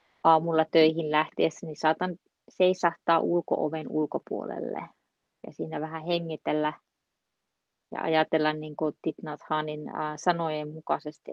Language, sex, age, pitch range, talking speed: Finnish, female, 30-49, 155-175 Hz, 95 wpm